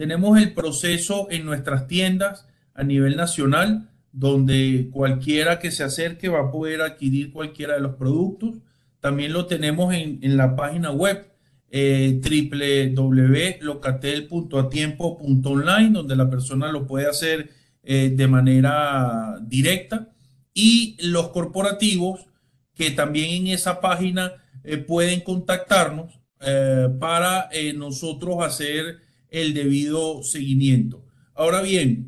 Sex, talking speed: male, 120 wpm